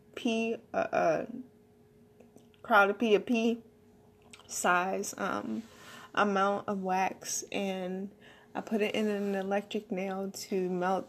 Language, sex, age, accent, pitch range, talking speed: English, female, 20-39, American, 180-230 Hz, 120 wpm